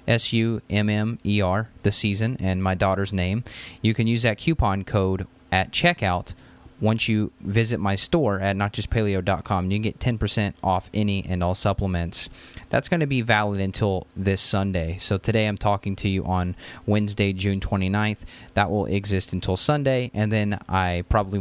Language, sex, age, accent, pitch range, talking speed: English, male, 20-39, American, 95-115 Hz, 165 wpm